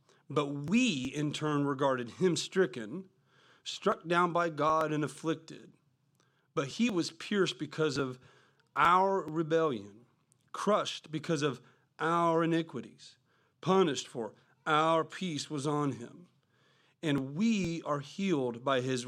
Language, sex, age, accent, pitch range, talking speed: English, male, 40-59, American, 120-155 Hz, 125 wpm